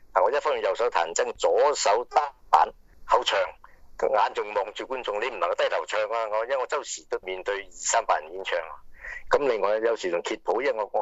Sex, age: male, 50-69